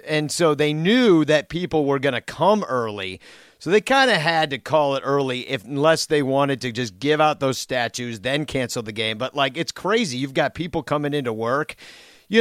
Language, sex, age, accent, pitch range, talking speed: English, male, 40-59, American, 120-150 Hz, 220 wpm